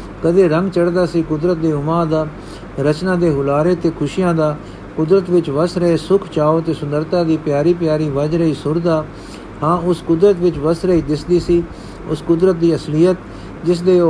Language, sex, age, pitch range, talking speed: Punjabi, male, 60-79, 155-180 Hz, 185 wpm